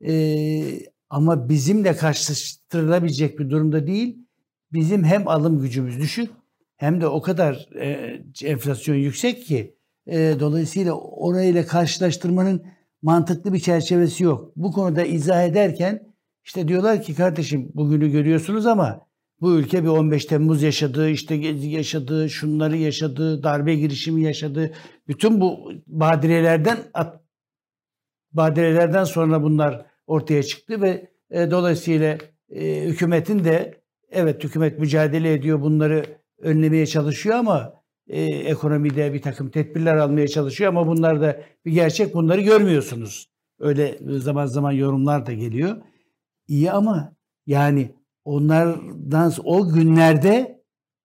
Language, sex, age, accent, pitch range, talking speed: Turkish, male, 60-79, native, 150-175 Hz, 120 wpm